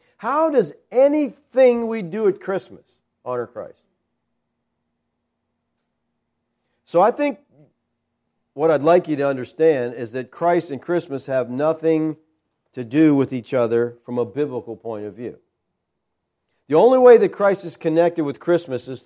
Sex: male